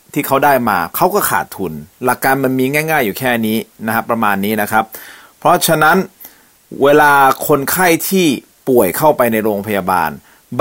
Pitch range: 100-130 Hz